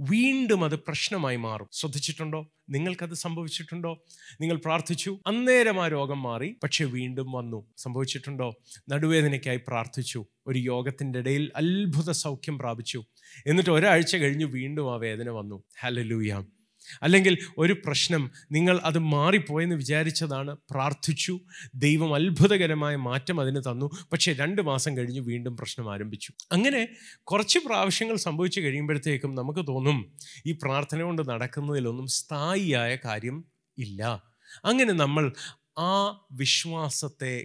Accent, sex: native, male